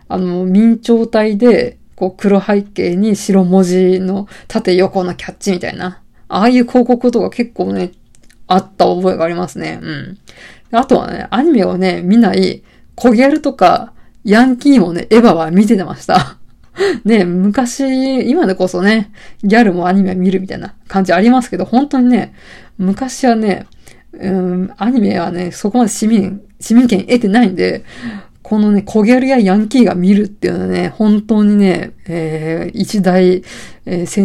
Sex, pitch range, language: female, 185-235 Hz, Japanese